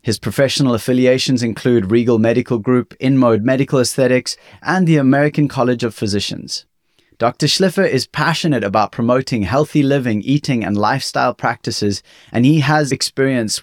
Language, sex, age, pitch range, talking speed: English, male, 30-49, 110-145 Hz, 140 wpm